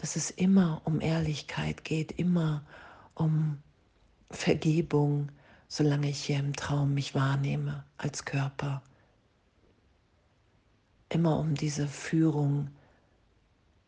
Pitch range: 100-150 Hz